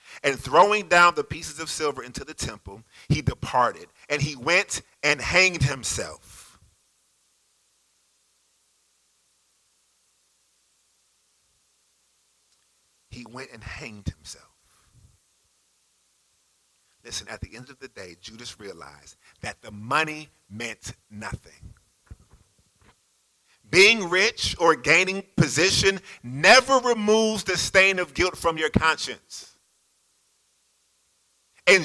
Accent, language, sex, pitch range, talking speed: American, English, male, 95-165 Hz, 100 wpm